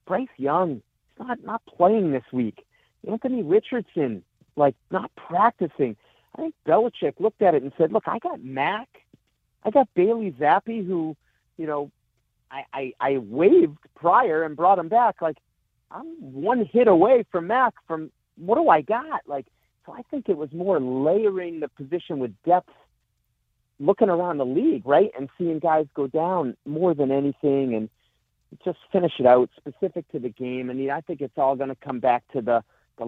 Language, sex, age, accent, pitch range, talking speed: English, male, 50-69, American, 120-170 Hz, 180 wpm